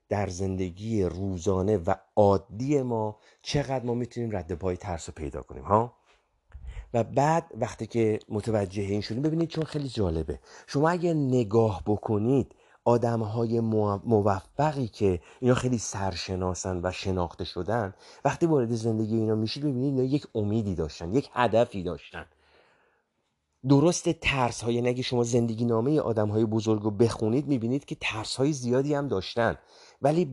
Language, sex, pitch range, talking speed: Persian, male, 100-130 Hz, 145 wpm